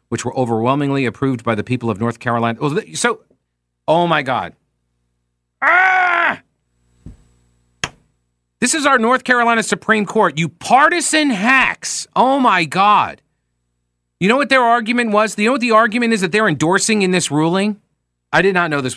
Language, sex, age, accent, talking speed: English, male, 40-59, American, 160 wpm